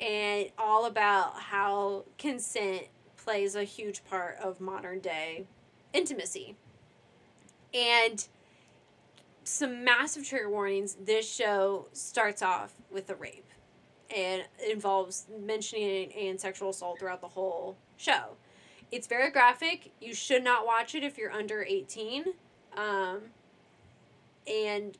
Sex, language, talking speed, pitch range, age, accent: female, English, 120 wpm, 195-225 Hz, 20-39, American